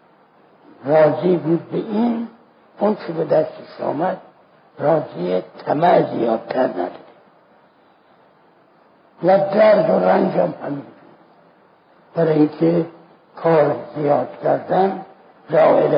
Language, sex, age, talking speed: Persian, male, 60-79, 80 wpm